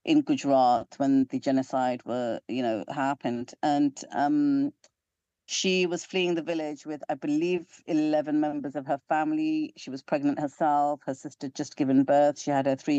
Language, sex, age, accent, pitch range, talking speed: English, female, 40-59, British, 140-185 Hz, 175 wpm